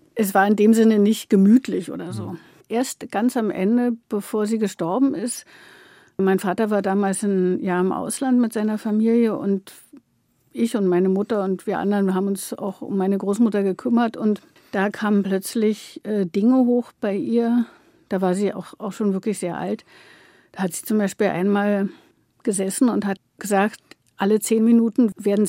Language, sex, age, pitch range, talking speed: German, female, 60-79, 195-230 Hz, 175 wpm